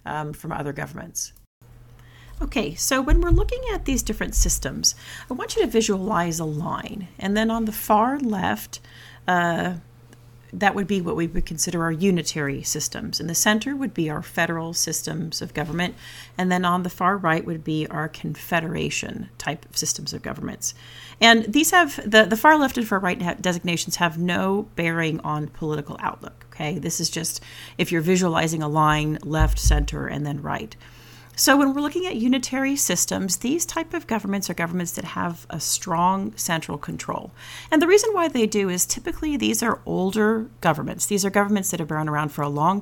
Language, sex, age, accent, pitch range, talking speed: English, female, 40-59, American, 155-215 Hz, 185 wpm